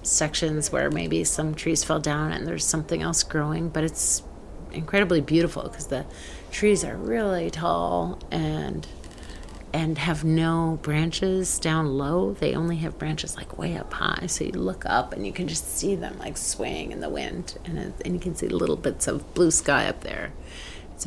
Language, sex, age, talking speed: English, female, 30-49, 185 wpm